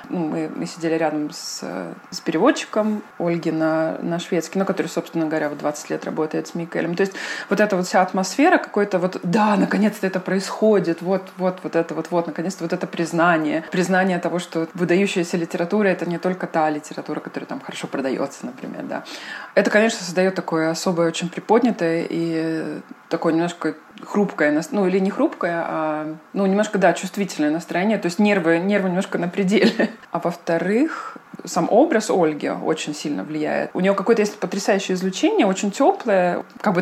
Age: 20-39